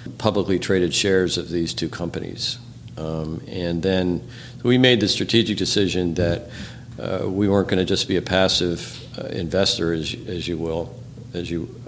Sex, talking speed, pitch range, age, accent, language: male, 165 wpm, 90-115 Hz, 50-69, American, English